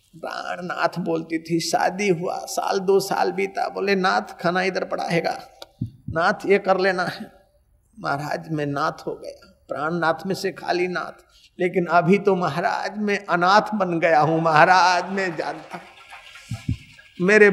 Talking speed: 150 wpm